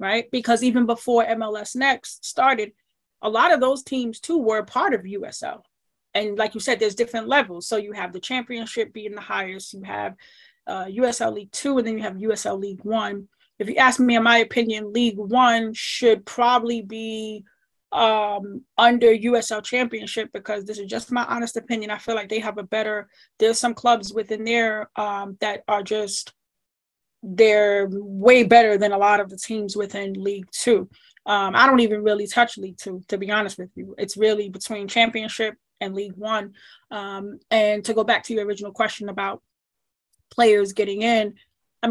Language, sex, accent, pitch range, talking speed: English, female, American, 205-235 Hz, 190 wpm